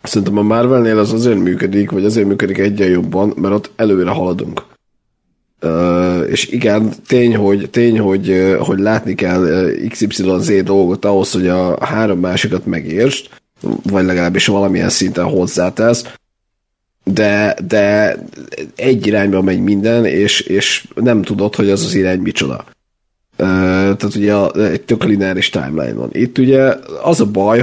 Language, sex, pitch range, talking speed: Hungarian, male, 95-110 Hz, 135 wpm